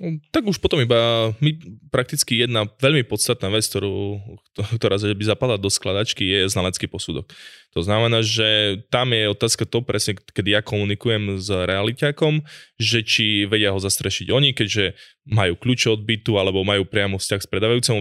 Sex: male